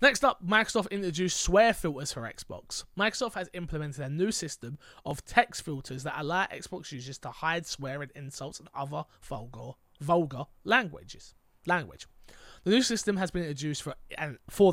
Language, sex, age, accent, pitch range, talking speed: English, male, 20-39, British, 145-185 Hz, 165 wpm